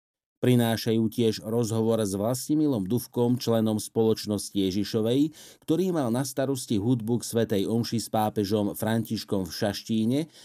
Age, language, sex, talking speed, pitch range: 50-69, Slovak, male, 125 wpm, 105-130 Hz